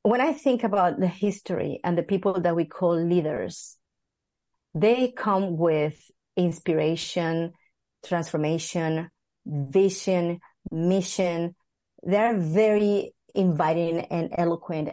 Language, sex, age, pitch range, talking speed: English, female, 30-49, 170-220 Hz, 100 wpm